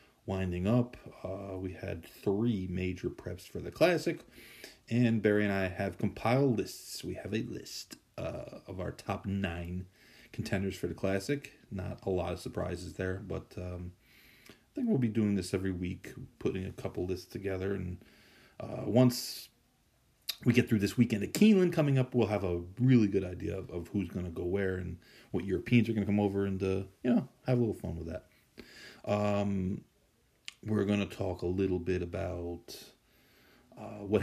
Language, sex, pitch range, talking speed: English, male, 90-115 Hz, 180 wpm